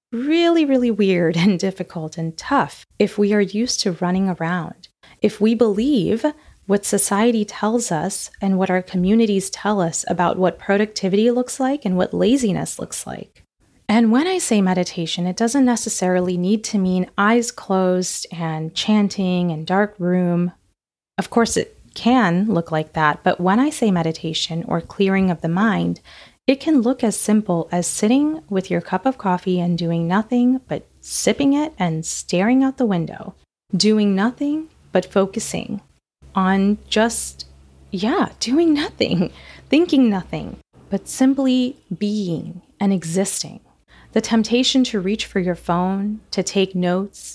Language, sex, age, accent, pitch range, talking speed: English, female, 30-49, American, 180-230 Hz, 155 wpm